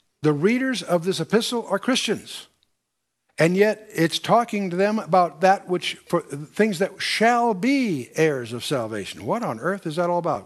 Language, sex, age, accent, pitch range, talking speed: English, male, 60-79, American, 150-195 Hz, 180 wpm